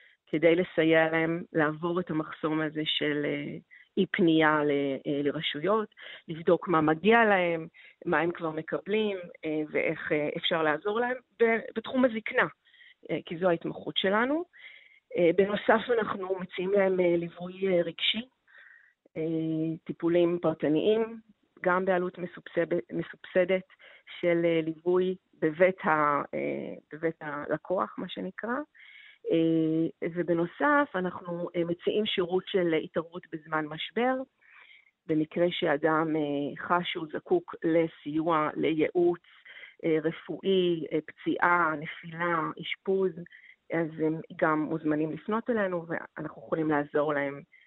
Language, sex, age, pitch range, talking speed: Hebrew, female, 40-59, 155-195 Hz, 100 wpm